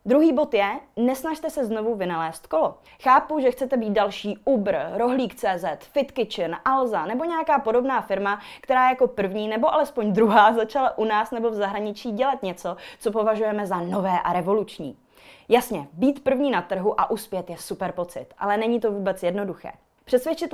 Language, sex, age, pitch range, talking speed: Czech, female, 20-39, 200-280 Hz, 165 wpm